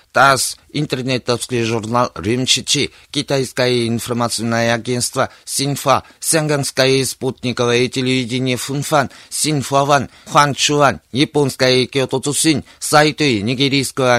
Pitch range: 125-145 Hz